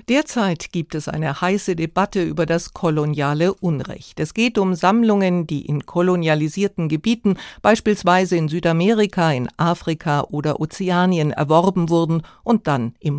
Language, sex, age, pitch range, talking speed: German, female, 50-69, 150-205 Hz, 135 wpm